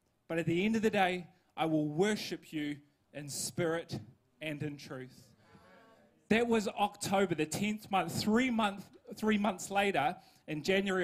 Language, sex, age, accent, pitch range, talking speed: English, male, 20-39, Australian, 145-200 Hz, 160 wpm